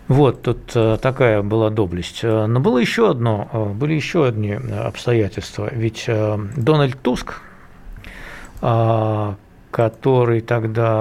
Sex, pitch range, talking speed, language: male, 105-135 Hz, 100 wpm, Russian